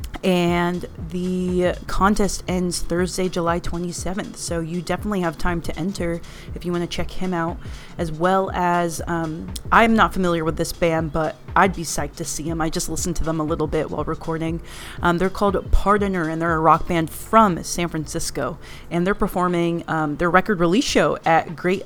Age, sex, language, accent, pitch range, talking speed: 30-49, female, English, American, 165-195 Hz, 200 wpm